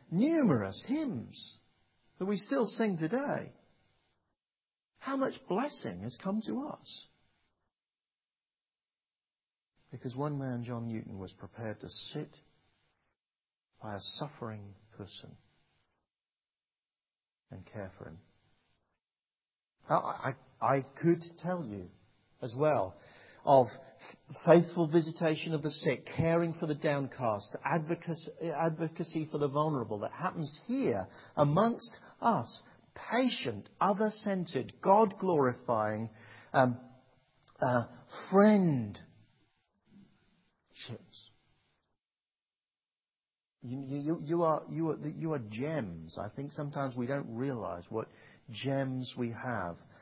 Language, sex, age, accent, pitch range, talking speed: English, male, 50-69, British, 115-165 Hz, 90 wpm